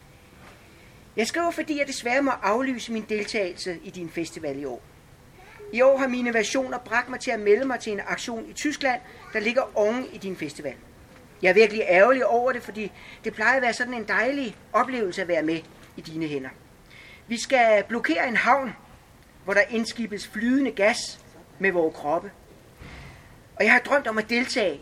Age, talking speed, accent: 40-59, 185 wpm, Danish